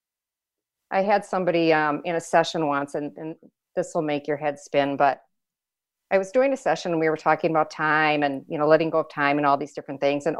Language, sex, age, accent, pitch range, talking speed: English, female, 50-69, American, 160-205 Hz, 235 wpm